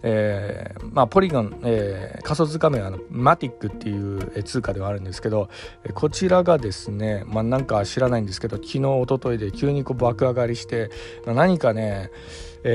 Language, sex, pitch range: Japanese, male, 105-140 Hz